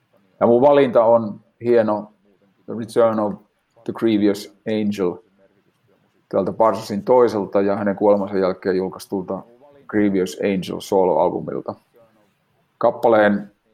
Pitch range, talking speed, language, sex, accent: 100-110 Hz, 100 wpm, Finnish, male, native